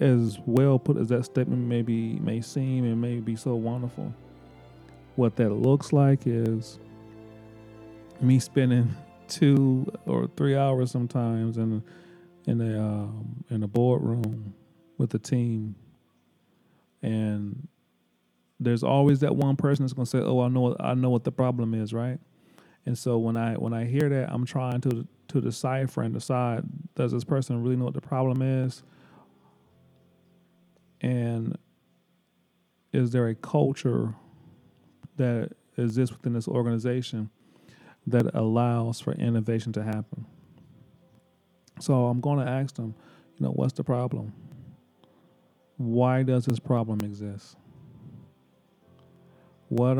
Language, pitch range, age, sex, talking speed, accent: English, 110-130 Hz, 30-49, male, 135 wpm, American